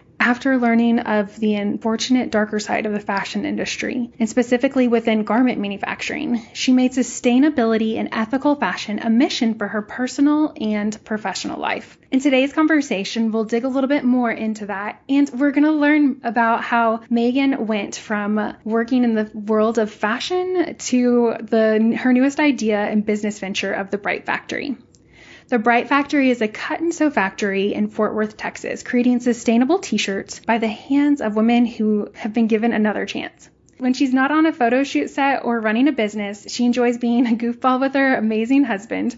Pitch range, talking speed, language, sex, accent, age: 215-260 Hz, 180 wpm, English, female, American, 10-29